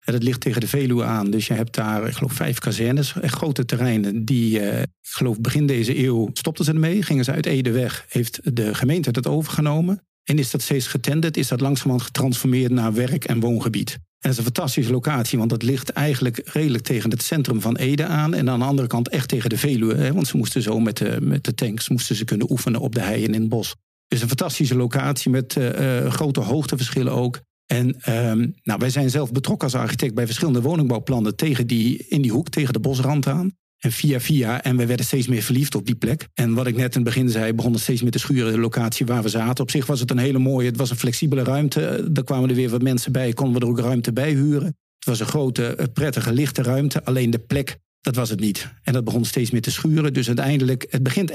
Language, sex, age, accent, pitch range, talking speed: Dutch, male, 50-69, Dutch, 120-145 Hz, 235 wpm